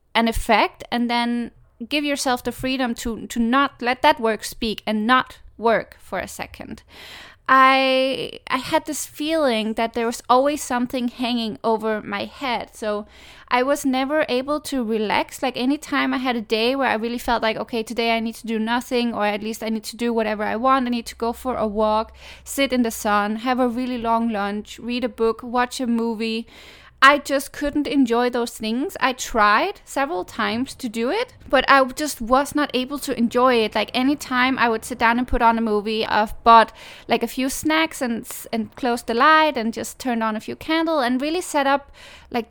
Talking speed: 210 wpm